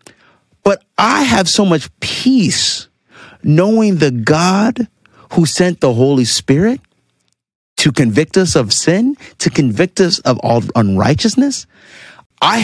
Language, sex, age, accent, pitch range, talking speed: English, male, 30-49, American, 150-210 Hz, 125 wpm